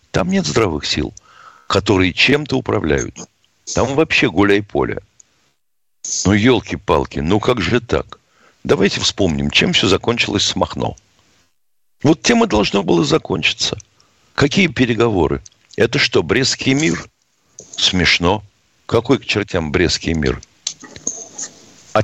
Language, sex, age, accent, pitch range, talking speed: Russian, male, 60-79, native, 85-115 Hz, 115 wpm